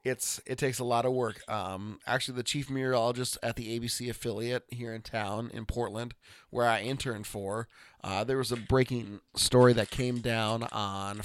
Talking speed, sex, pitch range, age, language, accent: 185 wpm, male, 105-120 Hz, 30-49, English, American